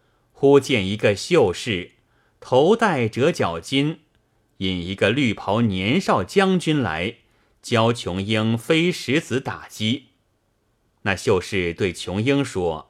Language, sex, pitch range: Chinese, male, 100-140 Hz